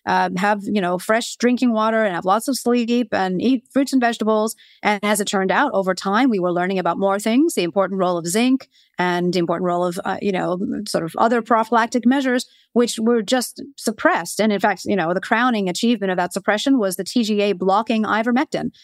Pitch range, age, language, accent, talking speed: 195-245 Hz, 30-49, English, American, 215 wpm